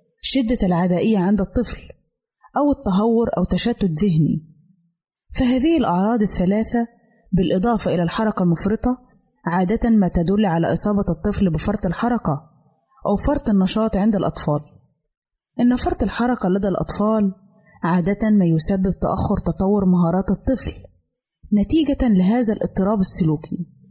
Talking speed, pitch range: 115 wpm, 175-225 Hz